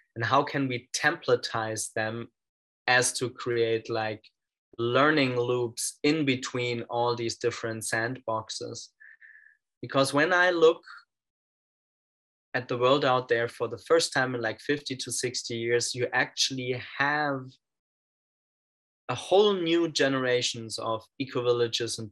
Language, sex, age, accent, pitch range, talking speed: English, male, 20-39, German, 115-135 Hz, 130 wpm